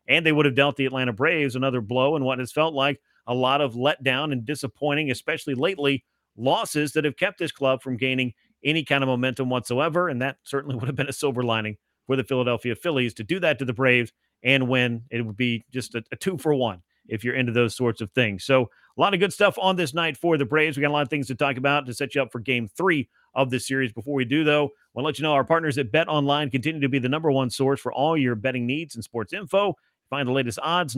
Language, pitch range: English, 130-155 Hz